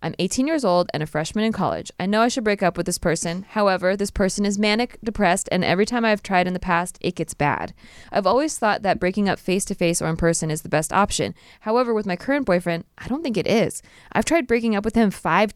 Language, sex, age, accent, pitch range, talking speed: English, female, 20-39, American, 175-215 Hz, 255 wpm